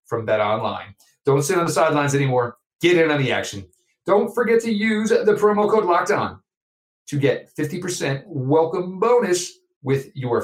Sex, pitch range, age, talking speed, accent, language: male, 115-160 Hz, 40-59, 180 wpm, American, English